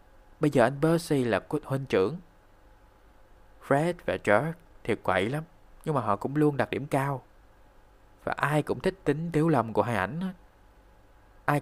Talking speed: 170 wpm